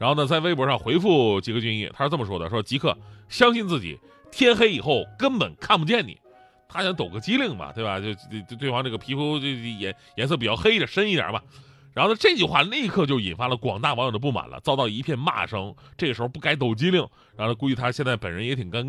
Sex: male